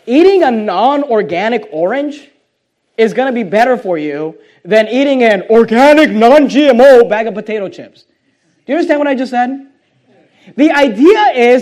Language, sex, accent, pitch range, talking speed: English, male, American, 230-295 Hz, 155 wpm